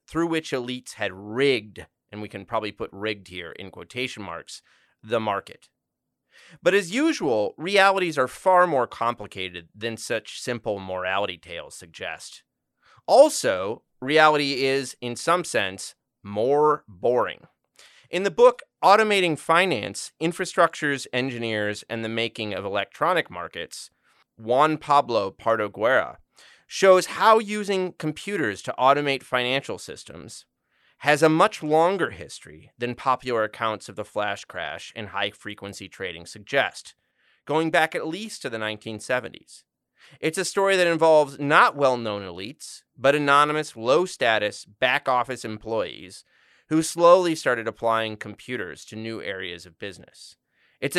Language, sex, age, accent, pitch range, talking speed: English, male, 30-49, American, 110-160 Hz, 130 wpm